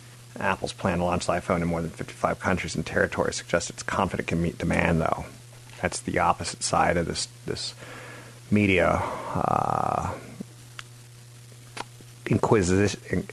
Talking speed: 140 wpm